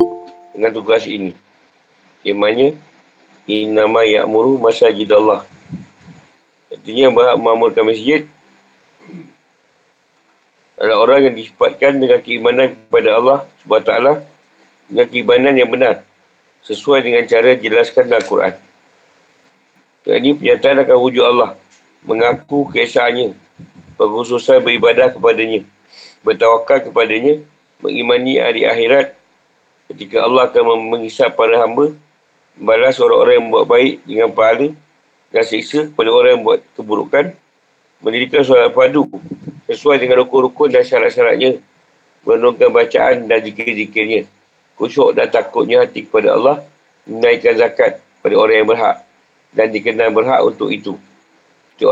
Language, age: Malay, 50-69